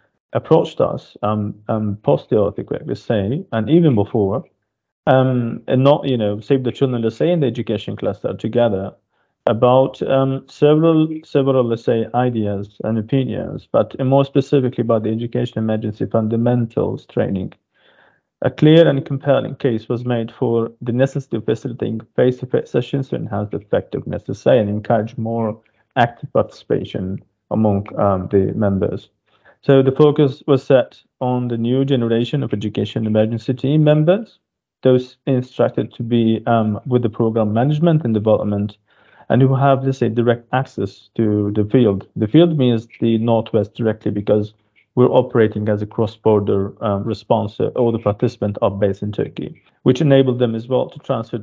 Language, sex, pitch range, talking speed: English, male, 110-135 Hz, 155 wpm